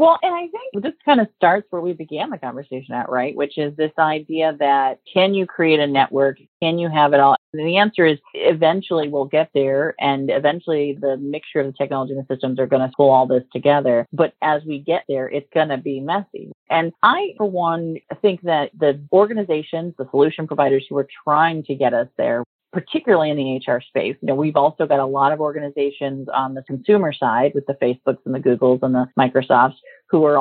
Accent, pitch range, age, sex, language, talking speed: American, 135-165 Hz, 40-59, female, English, 220 wpm